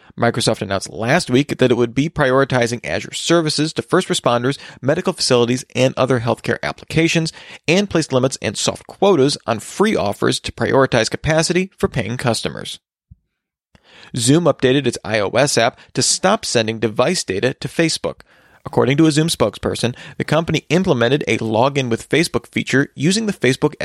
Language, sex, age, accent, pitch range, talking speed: English, male, 40-59, American, 120-160 Hz, 160 wpm